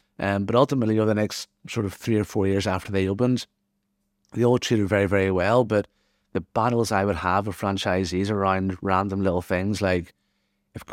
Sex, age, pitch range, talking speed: male, 30-49, 95-115 Hz, 190 wpm